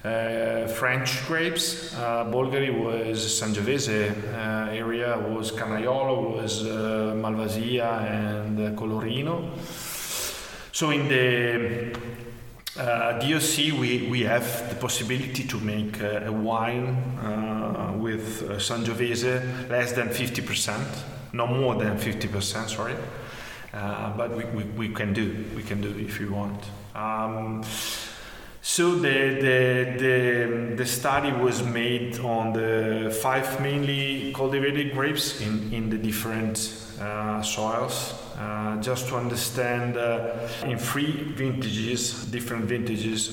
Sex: male